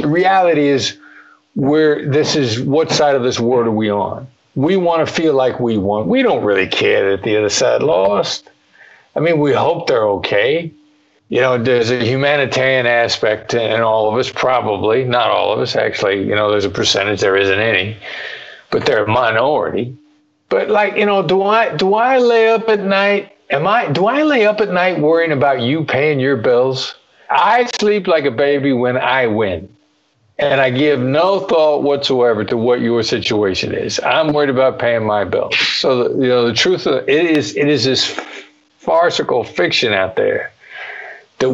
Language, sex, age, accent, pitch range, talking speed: English, male, 50-69, American, 115-160 Hz, 190 wpm